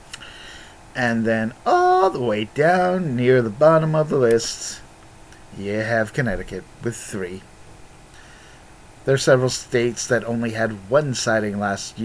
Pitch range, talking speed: 105-135 Hz, 135 wpm